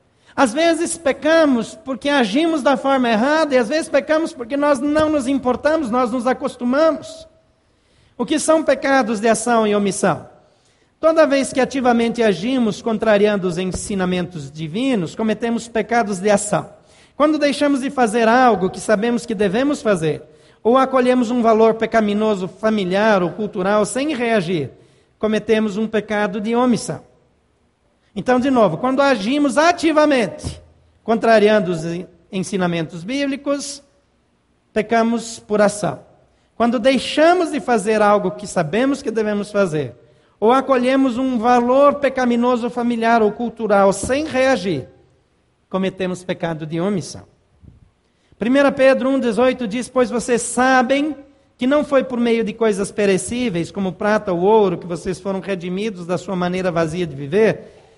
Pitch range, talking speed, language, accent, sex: 195-265 Hz, 135 wpm, Portuguese, Brazilian, male